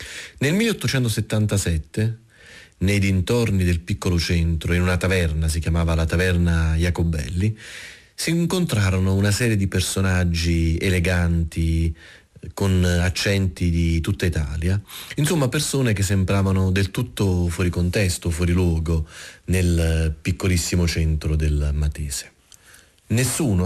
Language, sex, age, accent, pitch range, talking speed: Italian, male, 30-49, native, 80-100 Hz, 110 wpm